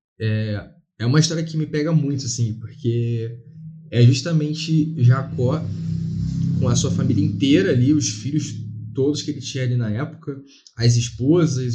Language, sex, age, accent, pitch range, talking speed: Portuguese, male, 20-39, Brazilian, 120-155 Hz, 155 wpm